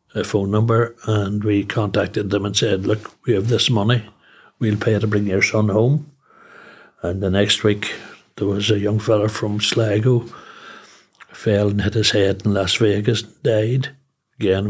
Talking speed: 170 wpm